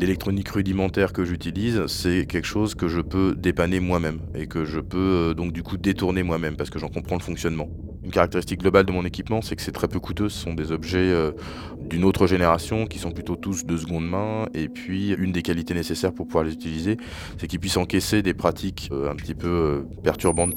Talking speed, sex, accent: 225 wpm, male, French